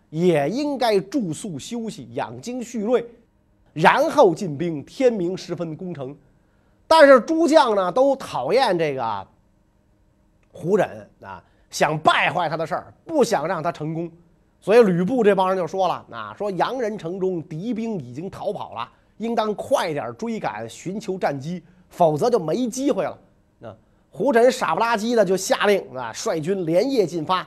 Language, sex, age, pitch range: Chinese, male, 30-49, 160-235 Hz